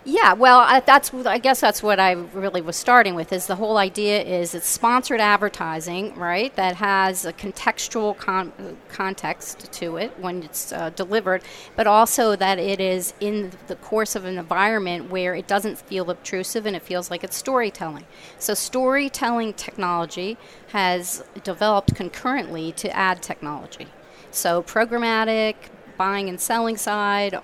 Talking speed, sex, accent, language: 150 wpm, female, American, English